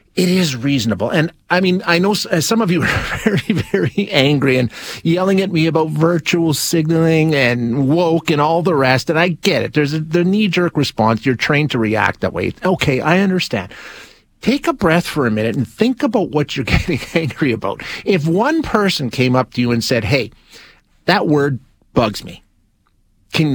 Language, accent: English, American